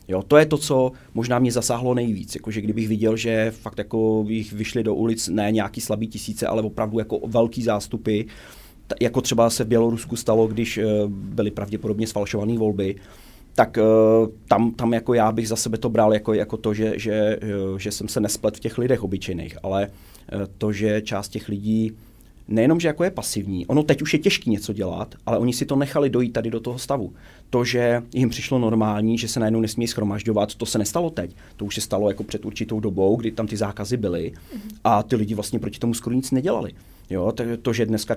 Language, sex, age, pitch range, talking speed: Czech, male, 30-49, 105-115 Hz, 210 wpm